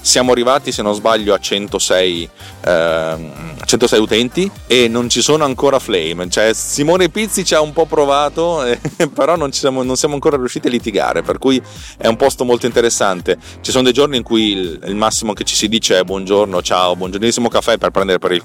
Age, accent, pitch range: 30-49, native, 95-135 Hz